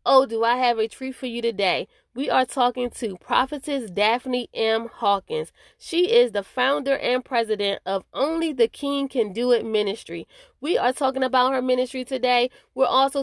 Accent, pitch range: American, 205-255 Hz